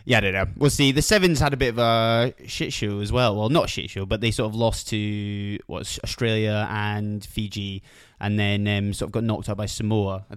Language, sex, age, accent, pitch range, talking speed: English, male, 20-39, British, 105-130 Hz, 250 wpm